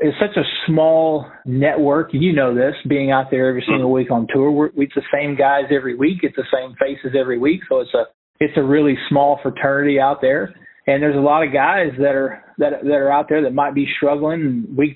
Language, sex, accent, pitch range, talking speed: English, male, American, 130-150 Hz, 230 wpm